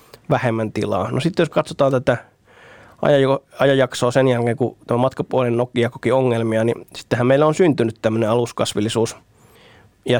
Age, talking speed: 20-39, 130 wpm